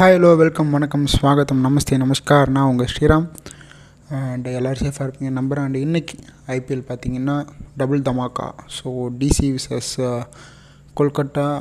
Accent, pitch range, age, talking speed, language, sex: native, 130-145 Hz, 20-39, 125 wpm, Tamil, male